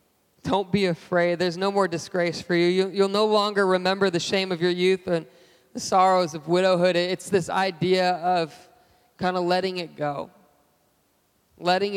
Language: English